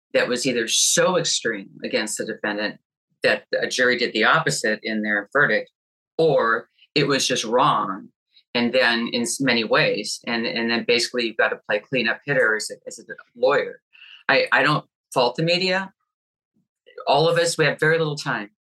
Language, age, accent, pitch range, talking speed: English, 40-59, American, 120-160 Hz, 180 wpm